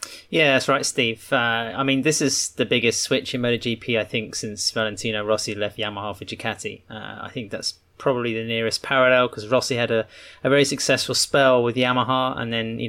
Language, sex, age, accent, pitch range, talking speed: English, male, 30-49, British, 110-130 Hz, 205 wpm